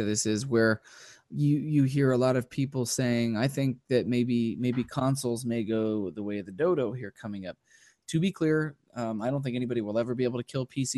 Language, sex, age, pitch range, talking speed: English, male, 20-39, 115-135 Hz, 230 wpm